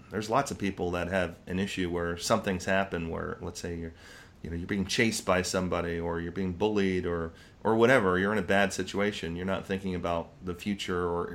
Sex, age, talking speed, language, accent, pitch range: male, 30-49, 215 wpm, English, American, 90-105 Hz